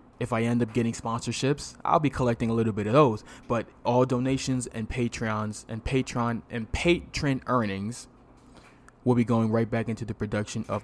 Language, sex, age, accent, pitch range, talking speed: English, male, 20-39, American, 110-130 Hz, 185 wpm